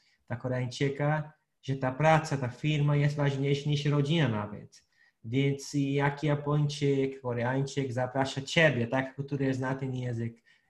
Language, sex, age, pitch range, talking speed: Polish, male, 20-39, 135-155 Hz, 130 wpm